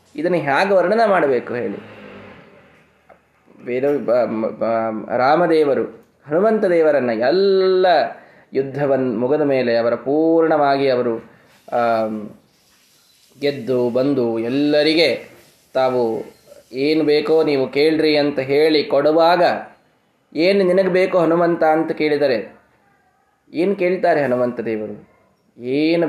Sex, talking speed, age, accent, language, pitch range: male, 85 wpm, 20-39, native, Kannada, 130-185 Hz